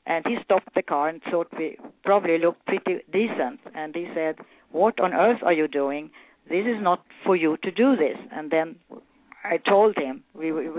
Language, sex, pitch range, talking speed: English, female, 165-210 Hz, 200 wpm